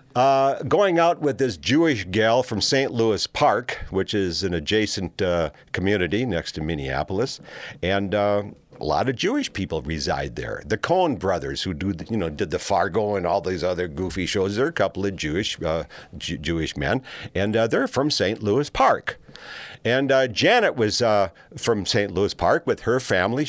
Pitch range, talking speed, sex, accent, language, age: 90-115 Hz, 190 wpm, male, American, English, 50-69